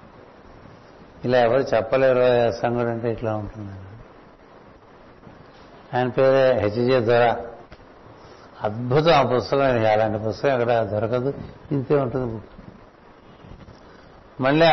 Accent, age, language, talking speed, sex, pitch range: native, 60-79, Telugu, 100 wpm, male, 120-145 Hz